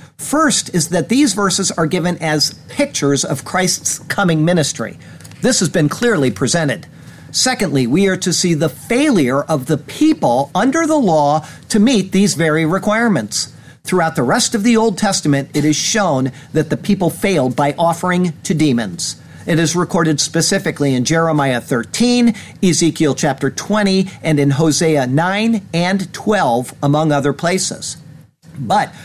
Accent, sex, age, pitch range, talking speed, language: American, male, 50-69, 140-185 Hz, 155 wpm, English